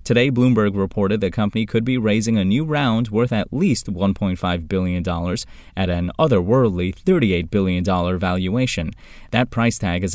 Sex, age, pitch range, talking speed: male, 20-39, 90-120 Hz, 155 wpm